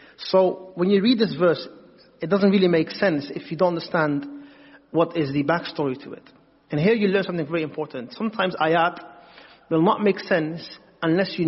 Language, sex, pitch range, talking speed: English, male, 165-210 Hz, 190 wpm